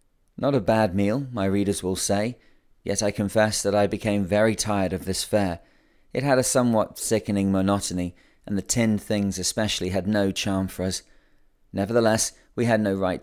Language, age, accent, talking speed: English, 30-49, British, 180 wpm